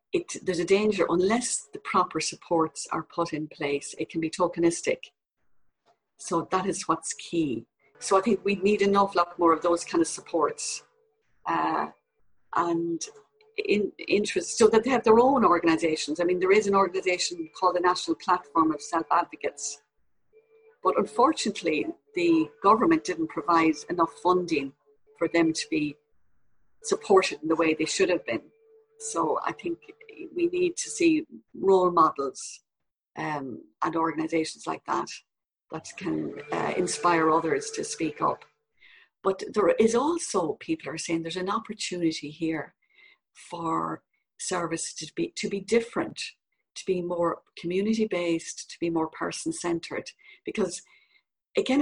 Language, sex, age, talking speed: English, female, 50-69, 145 wpm